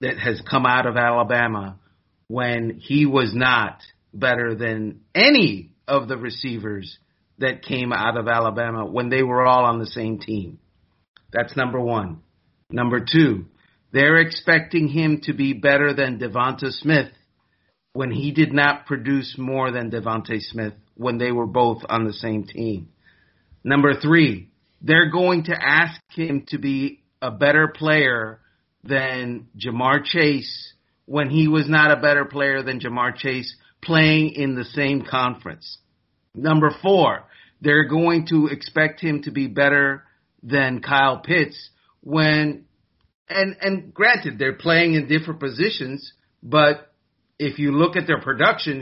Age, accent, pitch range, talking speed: 40-59, American, 120-150 Hz, 145 wpm